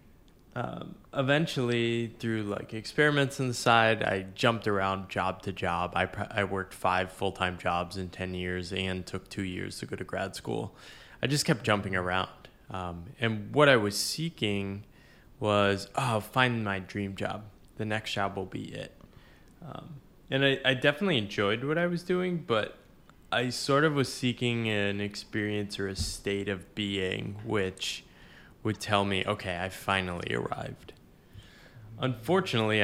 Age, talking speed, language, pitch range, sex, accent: 20-39, 165 wpm, English, 95-115 Hz, male, American